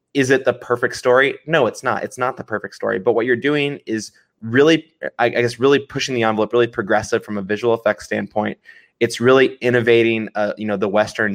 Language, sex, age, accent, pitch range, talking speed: English, male, 20-39, American, 105-125 Hz, 210 wpm